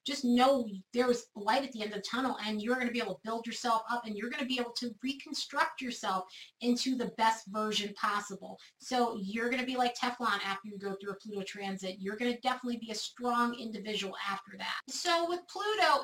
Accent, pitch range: American, 225-270 Hz